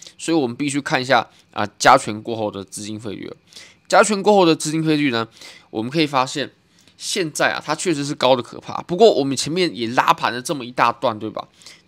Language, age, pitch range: Chinese, 20-39, 115-165 Hz